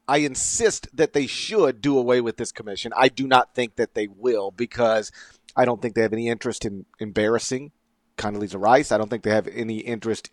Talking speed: 210 wpm